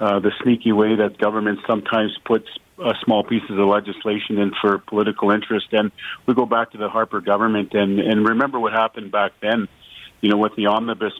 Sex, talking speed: male, 200 wpm